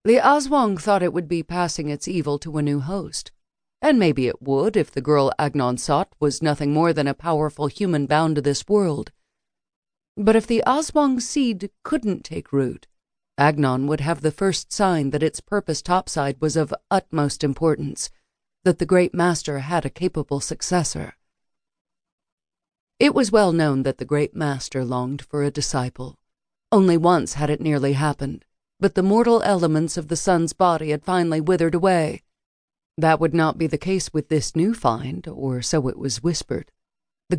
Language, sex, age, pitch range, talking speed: English, female, 40-59, 145-180 Hz, 175 wpm